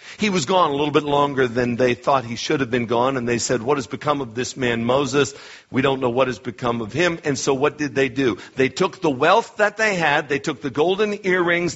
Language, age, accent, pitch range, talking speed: English, 60-79, American, 125-155 Hz, 260 wpm